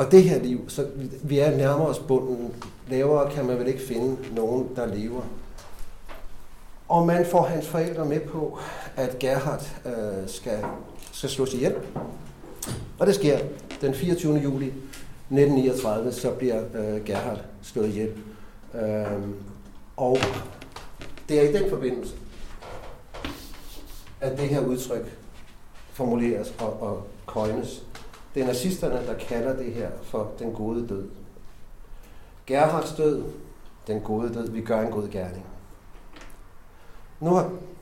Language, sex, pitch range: Danish, male, 105-135 Hz